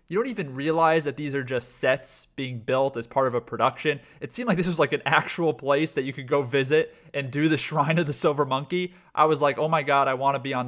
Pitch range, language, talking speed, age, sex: 135-160 Hz, English, 275 wpm, 30-49, male